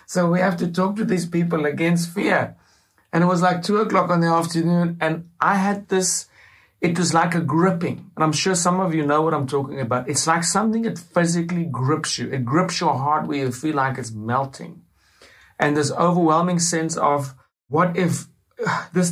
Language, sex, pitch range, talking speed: English, male, 145-180 Hz, 200 wpm